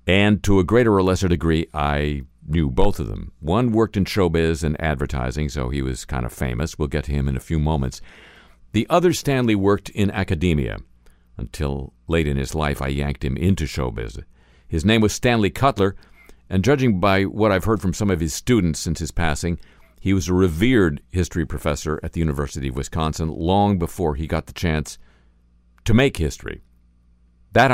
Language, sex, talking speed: English, male, 190 wpm